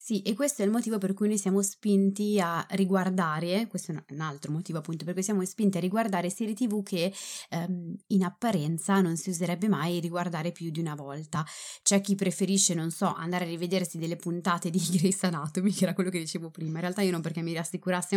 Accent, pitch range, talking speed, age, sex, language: native, 165-200 Hz, 215 wpm, 20-39, female, Italian